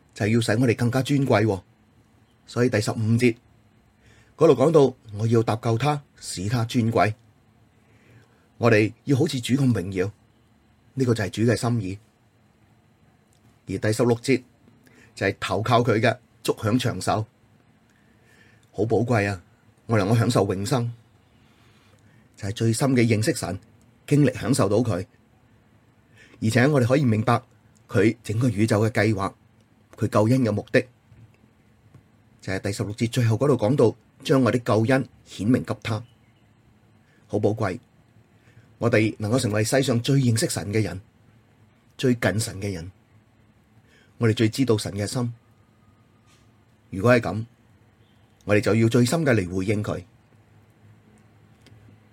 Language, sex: Chinese, male